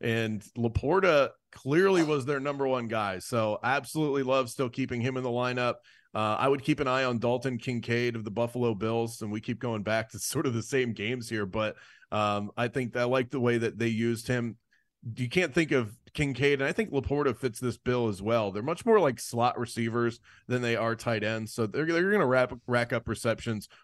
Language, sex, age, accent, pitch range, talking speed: English, male, 30-49, American, 115-140 Hz, 220 wpm